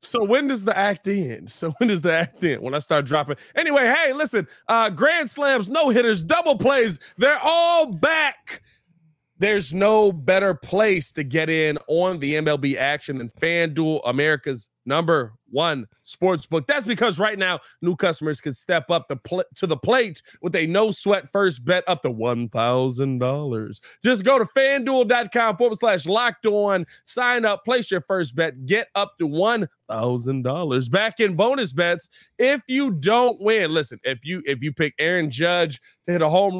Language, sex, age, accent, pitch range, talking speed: English, male, 20-39, American, 150-225 Hz, 180 wpm